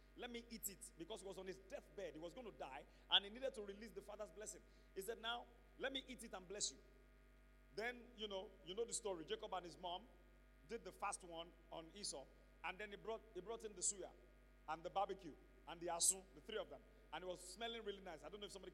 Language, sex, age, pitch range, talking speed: English, male, 40-59, 175-225 Hz, 255 wpm